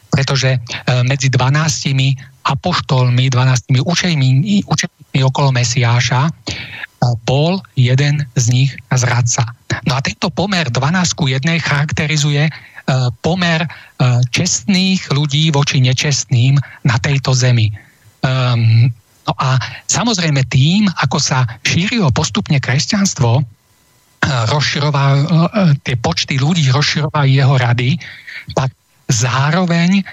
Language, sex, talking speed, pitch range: Czech, male, 95 wpm, 125-155 Hz